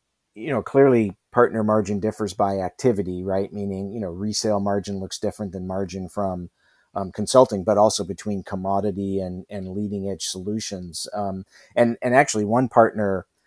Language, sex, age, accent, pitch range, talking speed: English, male, 50-69, American, 100-110 Hz, 160 wpm